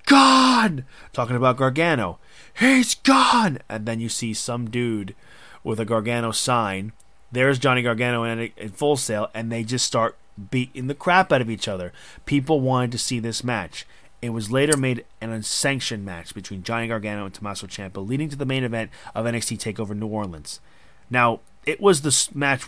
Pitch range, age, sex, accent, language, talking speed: 105-140 Hz, 30-49, male, American, English, 175 wpm